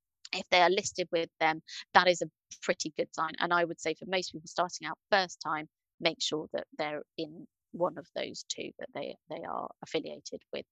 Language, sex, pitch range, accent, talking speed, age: English, female, 165-200 Hz, British, 215 wpm, 30-49